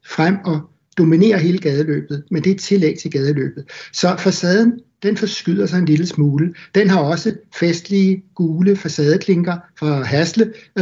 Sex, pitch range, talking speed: male, 155-190 Hz, 155 wpm